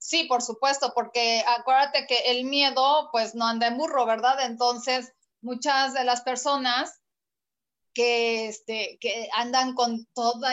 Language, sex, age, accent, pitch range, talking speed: Spanish, female, 30-49, Mexican, 230-275 Hz, 140 wpm